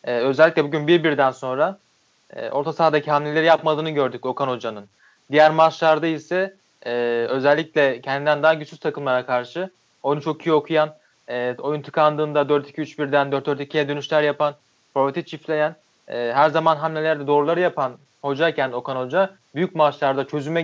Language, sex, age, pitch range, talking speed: Turkish, male, 30-49, 140-165 Hz, 140 wpm